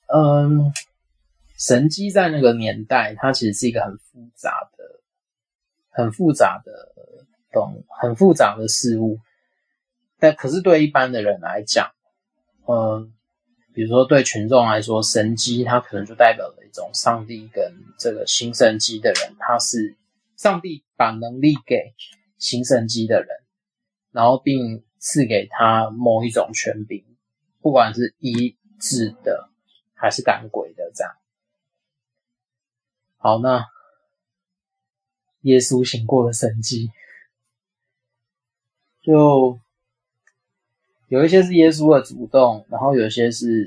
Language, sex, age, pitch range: Chinese, male, 30-49, 110-155 Hz